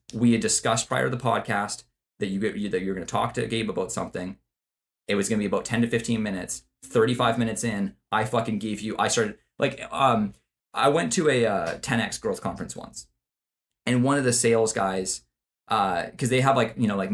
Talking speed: 220 wpm